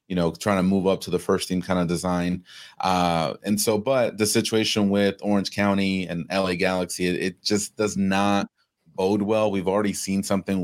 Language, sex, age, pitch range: English, male, 30-49, 90-105 Hz